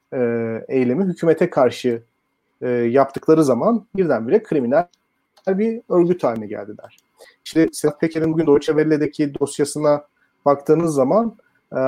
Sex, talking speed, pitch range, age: male, 110 wpm, 135-190 Hz, 40-59